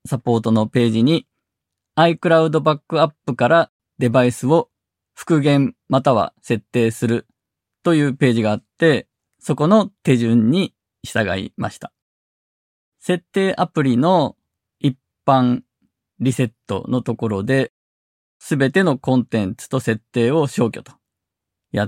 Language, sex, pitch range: Japanese, male, 110-155 Hz